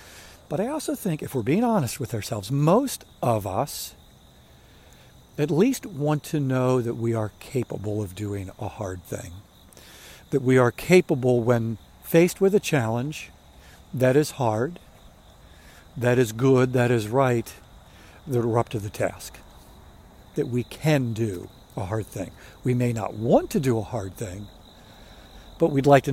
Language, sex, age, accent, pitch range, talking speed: English, male, 60-79, American, 105-155 Hz, 165 wpm